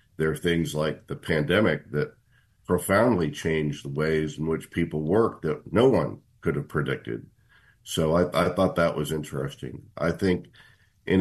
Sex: male